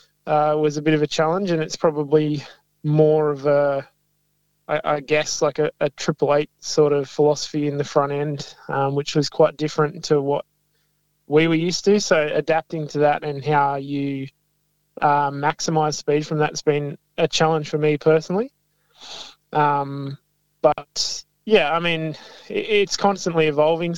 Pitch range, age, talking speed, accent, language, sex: 145-155 Hz, 20-39, 165 wpm, Australian, English, male